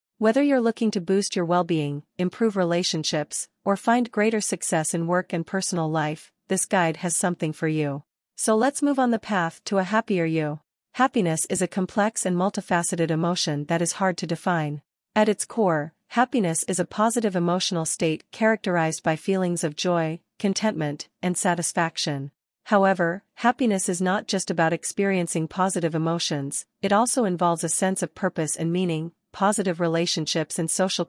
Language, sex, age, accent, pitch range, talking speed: English, female, 40-59, American, 165-200 Hz, 165 wpm